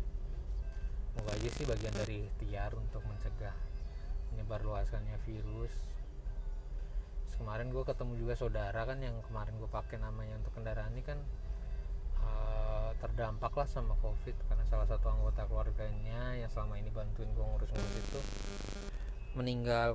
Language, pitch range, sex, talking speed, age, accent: Indonesian, 105-120 Hz, male, 135 wpm, 20-39, native